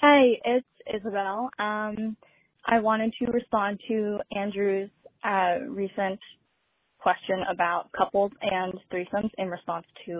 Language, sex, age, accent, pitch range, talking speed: English, female, 10-29, American, 185-230 Hz, 125 wpm